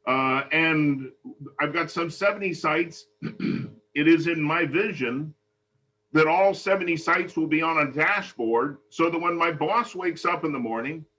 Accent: American